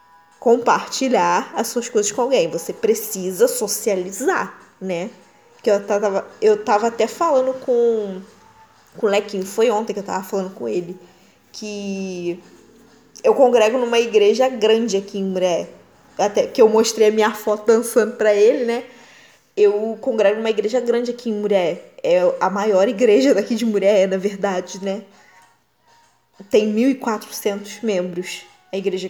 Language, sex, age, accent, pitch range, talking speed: Portuguese, female, 10-29, Brazilian, 200-265 Hz, 150 wpm